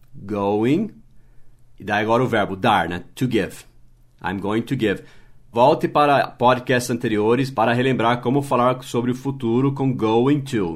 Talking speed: 155 wpm